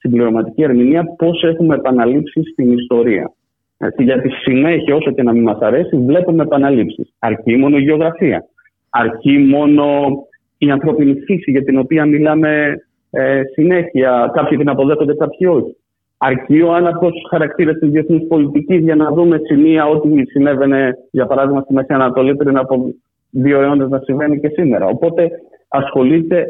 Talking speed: 155 wpm